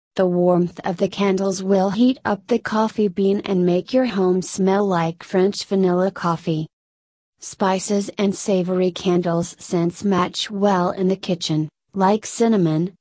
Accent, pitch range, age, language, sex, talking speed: American, 170-200 Hz, 30-49, English, female, 150 wpm